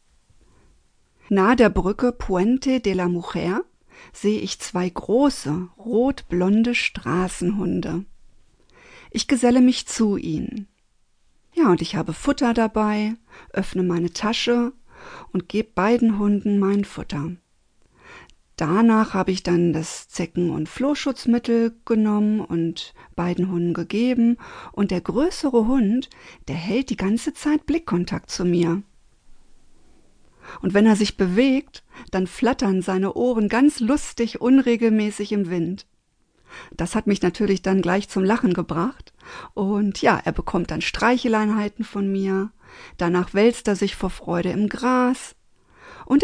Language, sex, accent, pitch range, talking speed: German, female, German, 185-250 Hz, 125 wpm